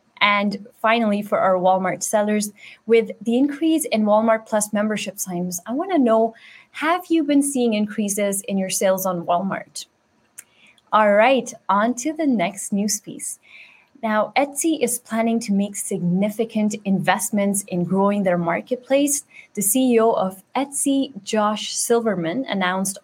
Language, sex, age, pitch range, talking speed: English, female, 20-39, 195-240 Hz, 145 wpm